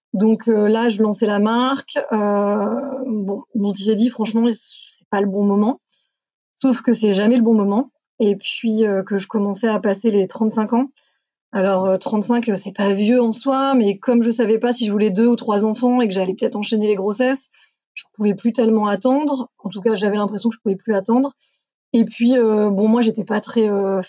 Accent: French